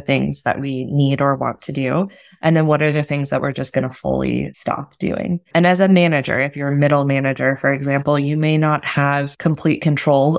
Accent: American